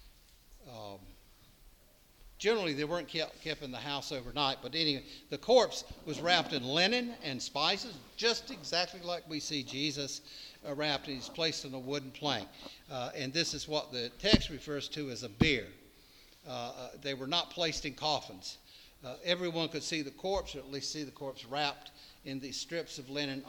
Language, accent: English, American